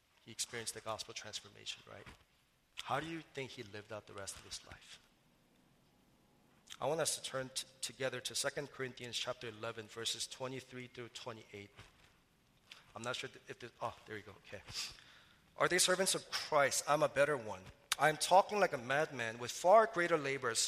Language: English